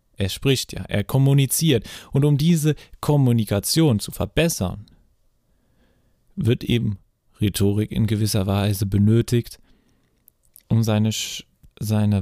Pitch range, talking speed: 105-130 Hz, 105 wpm